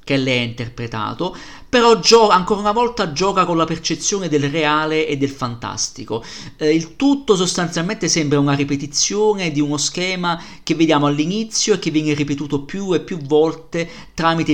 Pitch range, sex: 125-165 Hz, male